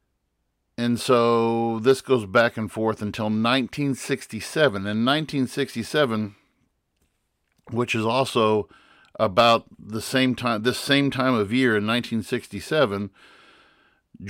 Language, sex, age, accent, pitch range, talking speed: English, male, 50-69, American, 105-125 Hz, 105 wpm